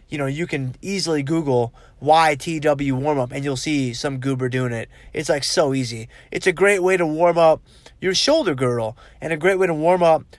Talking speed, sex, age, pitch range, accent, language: 210 wpm, male, 20-39, 130-180 Hz, American, English